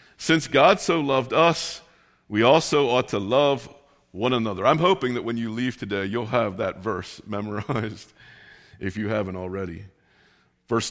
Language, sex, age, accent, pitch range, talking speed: English, male, 50-69, American, 105-140 Hz, 160 wpm